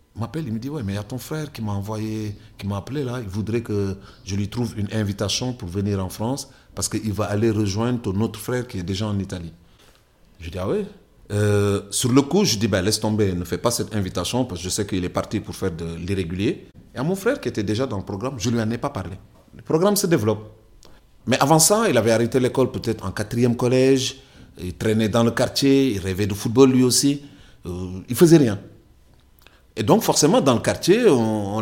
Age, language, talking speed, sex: 40-59, French, 240 wpm, male